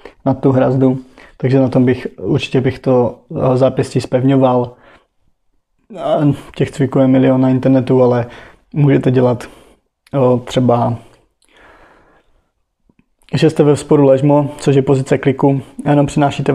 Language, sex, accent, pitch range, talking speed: Czech, male, native, 130-140 Hz, 125 wpm